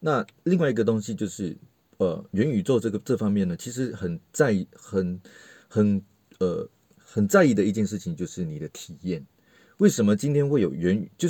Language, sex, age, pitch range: Chinese, male, 30-49, 100-135 Hz